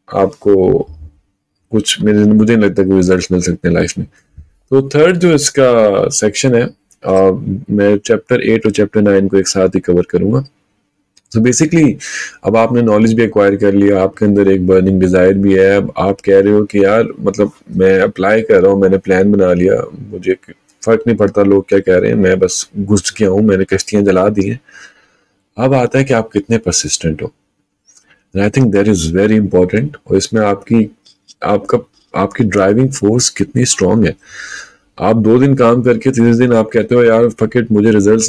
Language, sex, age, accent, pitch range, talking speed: Hindi, male, 30-49, native, 95-115 Hz, 165 wpm